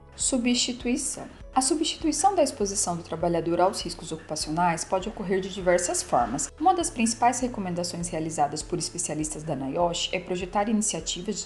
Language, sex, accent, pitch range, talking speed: Portuguese, female, Brazilian, 165-215 Hz, 140 wpm